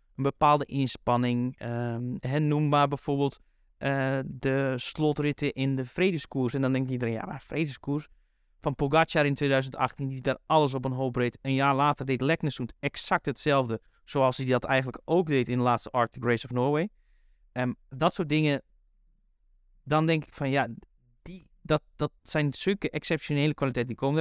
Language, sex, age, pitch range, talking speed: Dutch, male, 20-39, 125-150 Hz, 175 wpm